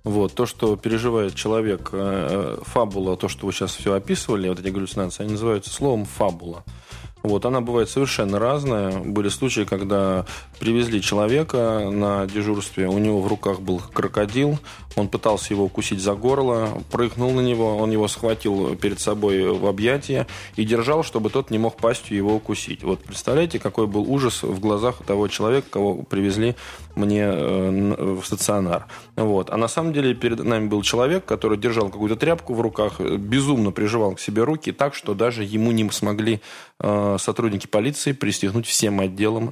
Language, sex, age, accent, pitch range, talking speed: Russian, male, 20-39, native, 100-115 Hz, 160 wpm